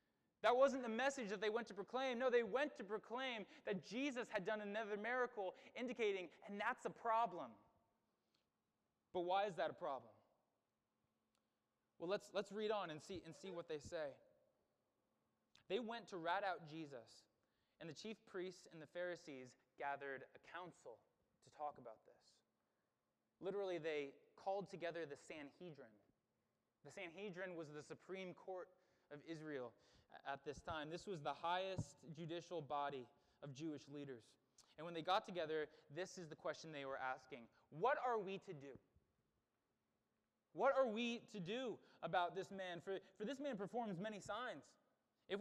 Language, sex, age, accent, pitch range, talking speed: English, male, 20-39, American, 160-220 Hz, 160 wpm